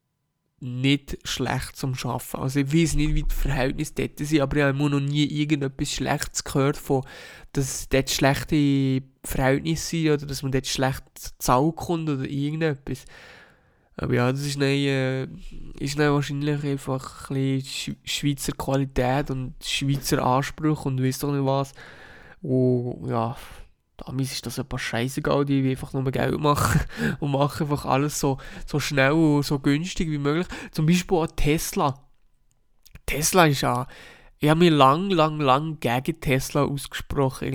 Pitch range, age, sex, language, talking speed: 135-155 Hz, 20-39, male, German, 160 wpm